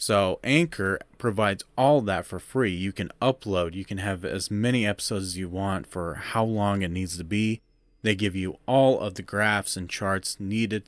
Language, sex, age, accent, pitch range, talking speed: English, male, 30-49, American, 95-115 Hz, 200 wpm